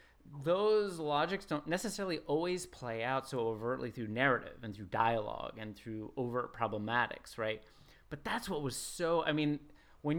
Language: English